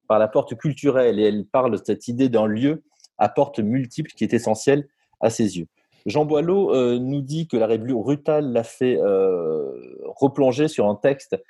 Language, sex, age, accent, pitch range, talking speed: French, male, 30-49, French, 110-150 Hz, 195 wpm